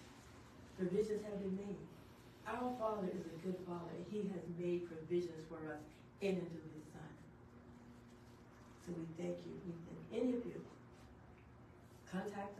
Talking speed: 150 wpm